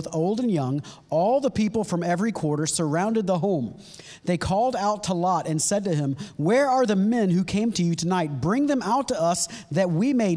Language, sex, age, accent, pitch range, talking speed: English, male, 40-59, American, 165-220 Hz, 225 wpm